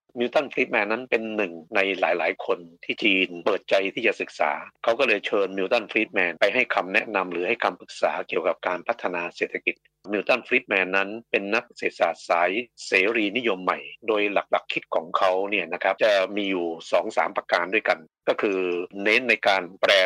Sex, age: male, 60-79